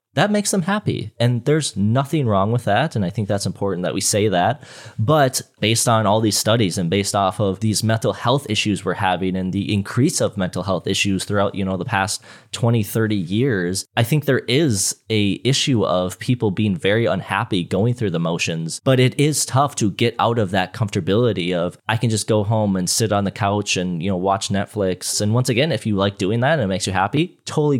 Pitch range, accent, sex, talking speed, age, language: 100-125 Hz, American, male, 225 wpm, 20-39, English